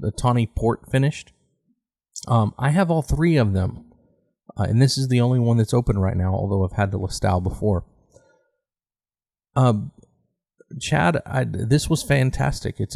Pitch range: 100-120 Hz